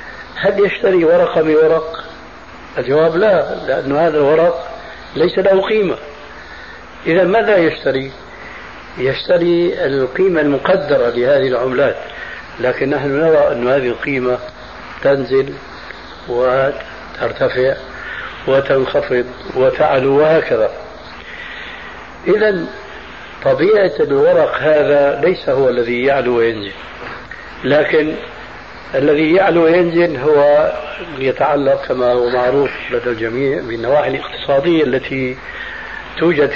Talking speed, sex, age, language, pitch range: 90 wpm, male, 60-79, Arabic, 130-170 Hz